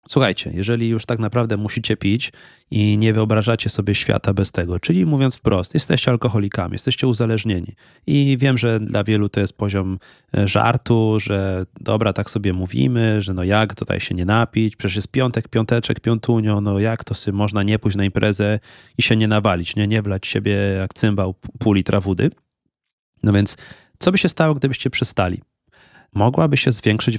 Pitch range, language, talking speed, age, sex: 105-130 Hz, Polish, 175 wpm, 30-49, male